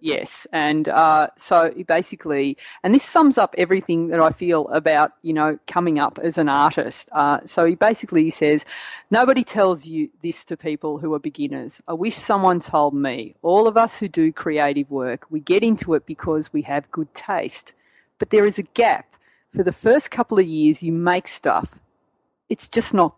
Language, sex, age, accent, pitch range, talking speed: English, female, 30-49, Australian, 160-215 Hz, 190 wpm